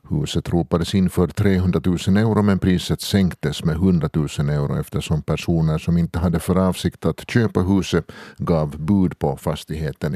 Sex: male